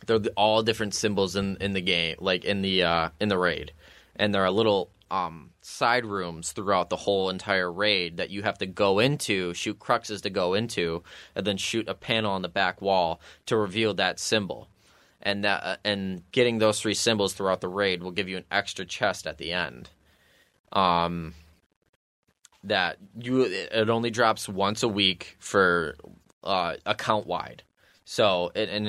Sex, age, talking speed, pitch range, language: male, 20-39, 180 wpm, 90-110 Hz, English